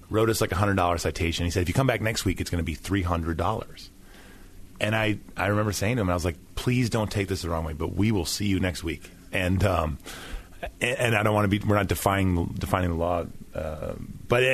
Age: 30-49